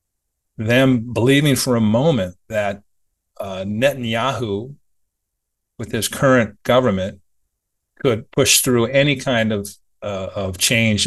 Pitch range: 95-125 Hz